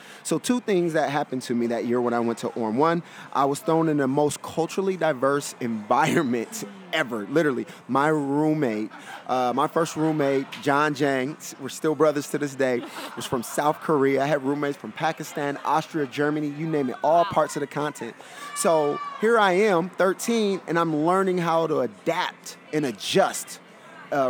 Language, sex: English, male